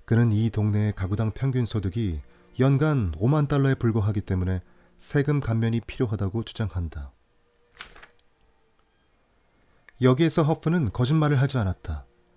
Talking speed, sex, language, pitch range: 95 wpm, male, English, 95-135 Hz